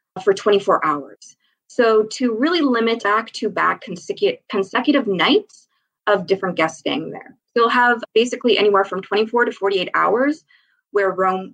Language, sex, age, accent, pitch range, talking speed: English, female, 20-39, American, 195-265 Hz, 150 wpm